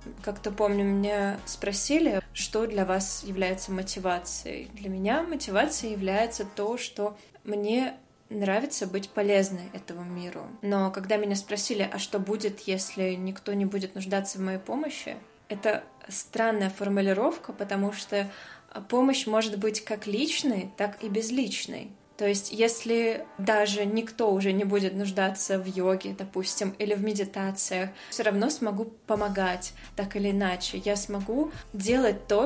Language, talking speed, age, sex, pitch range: Russian, 140 wpm, 20-39, female, 195-225 Hz